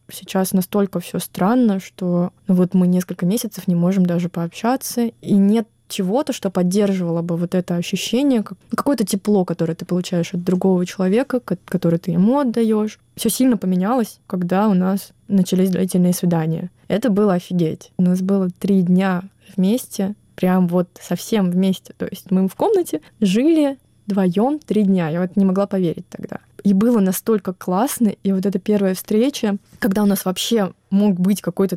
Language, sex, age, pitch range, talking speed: Russian, female, 20-39, 180-215 Hz, 165 wpm